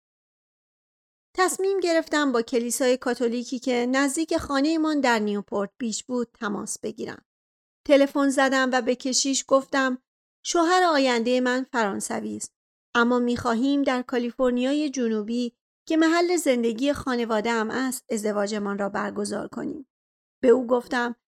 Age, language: 40-59, Persian